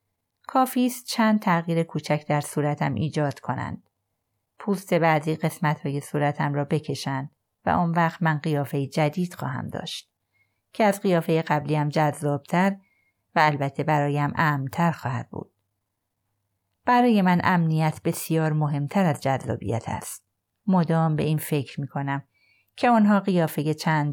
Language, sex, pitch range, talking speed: Persian, female, 140-180 Hz, 130 wpm